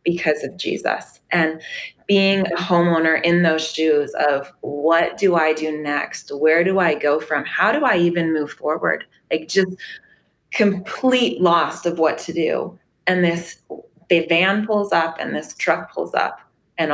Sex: female